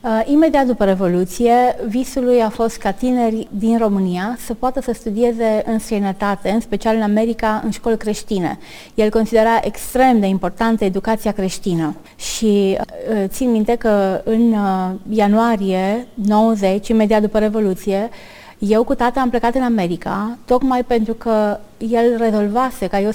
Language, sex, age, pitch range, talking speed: Romanian, female, 20-39, 200-240 Hz, 150 wpm